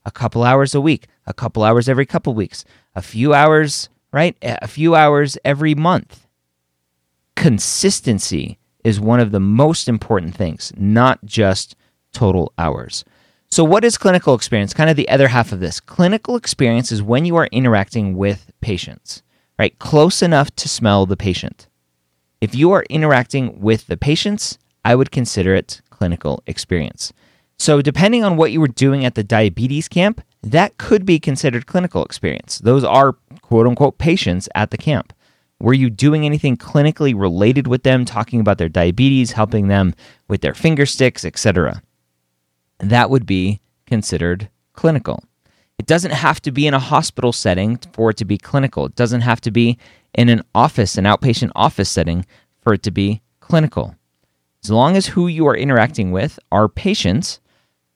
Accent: American